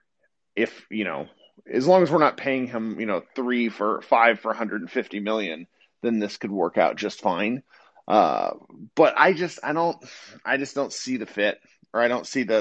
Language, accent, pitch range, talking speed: English, American, 105-140 Hz, 200 wpm